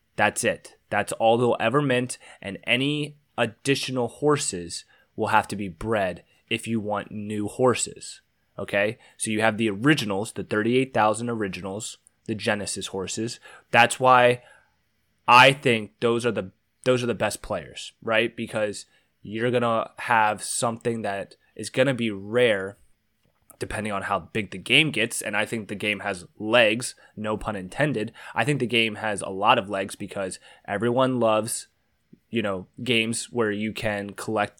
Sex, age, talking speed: male, 20-39, 165 wpm